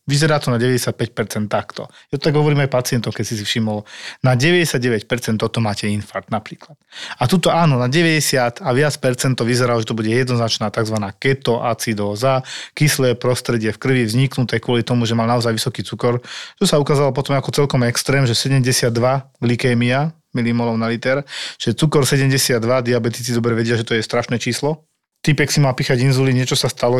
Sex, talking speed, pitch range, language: male, 180 wpm, 120-140 Hz, Slovak